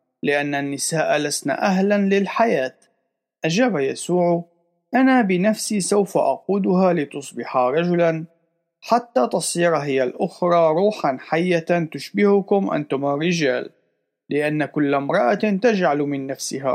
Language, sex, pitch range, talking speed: Arabic, male, 145-205 Hz, 100 wpm